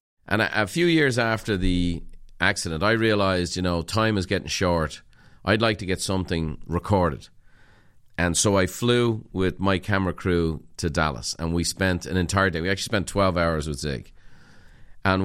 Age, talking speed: 40-59, 180 wpm